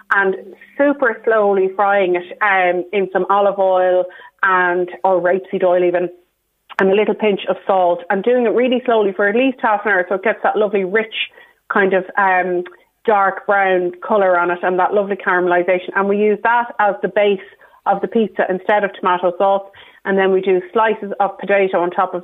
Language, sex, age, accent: English, female, 30-49, Irish